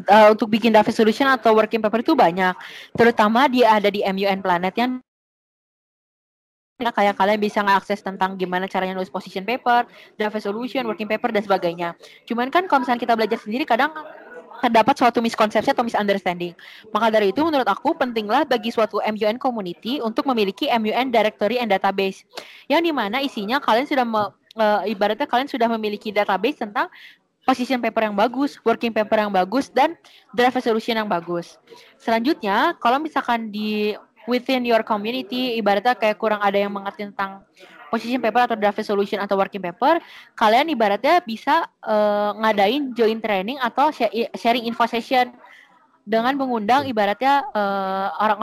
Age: 20-39